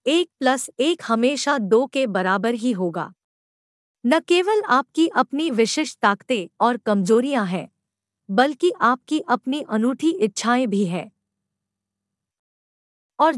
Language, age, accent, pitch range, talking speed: Hindi, 50-69, native, 215-305 Hz, 115 wpm